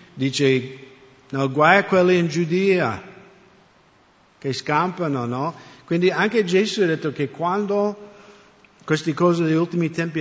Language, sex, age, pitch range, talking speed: English, male, 50-69, 125-165 Hz, 130 wpm